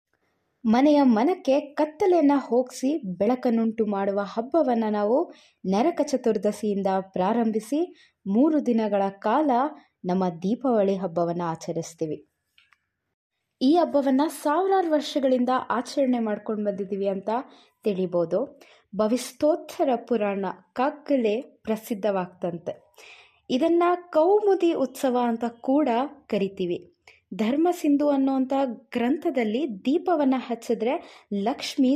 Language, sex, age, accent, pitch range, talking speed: Kannada, female, 20-39, native, 205-290 Hz, 80 wpm